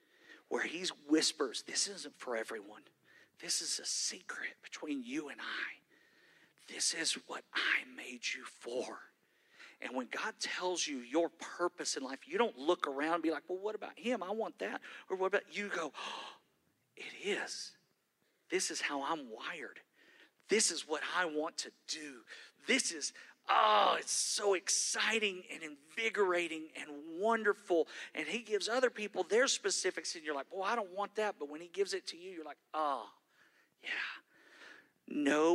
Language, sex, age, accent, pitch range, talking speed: English, male, 50-69, American, 165-250 Hz, 170 wpm